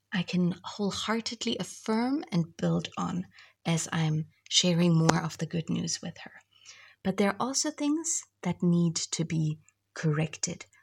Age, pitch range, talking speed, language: 30-49, 165-210 Hz, 150 wpm, English